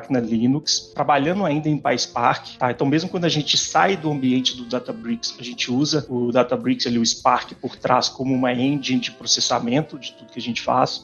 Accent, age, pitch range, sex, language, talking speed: Brazilian, 30-49, 130-155 Hz, male, Portuguese, 205 wpm